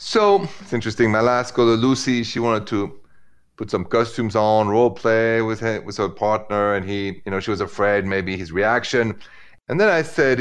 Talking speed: 200 wpm